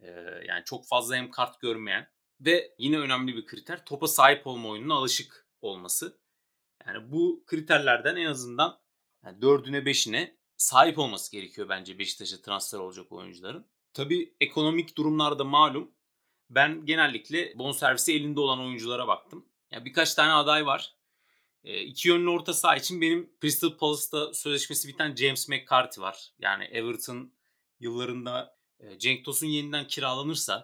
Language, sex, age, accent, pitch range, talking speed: Turkish, male, 30-49, native, 120-155 Hz, 135 wpm